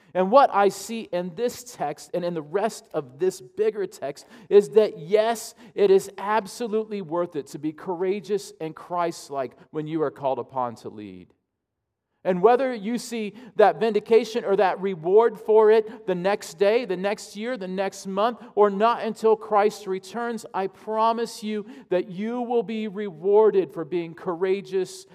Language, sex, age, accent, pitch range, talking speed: English, male, 40-59, American, 160-220 Hz, 170 wpm